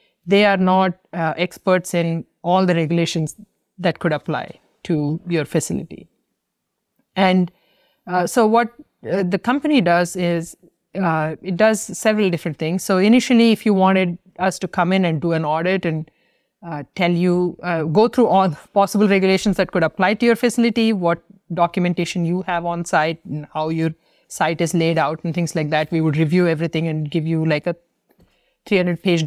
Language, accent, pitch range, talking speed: English, Indian, 165-190 Hz, 180 wpm